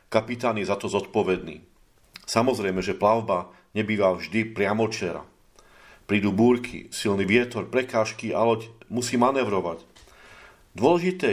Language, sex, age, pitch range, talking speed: Slovak, male, 40-59, 105-125 Hz, 110 wpm